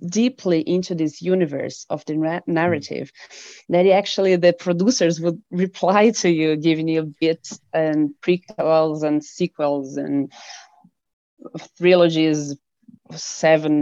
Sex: female